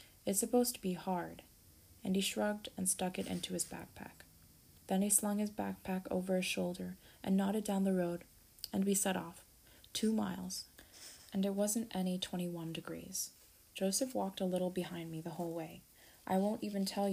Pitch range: 175-200 Hz